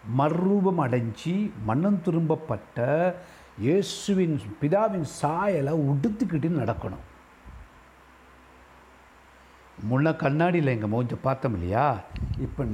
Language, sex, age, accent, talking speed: Tamil, male, 60-79, native, 75 wpm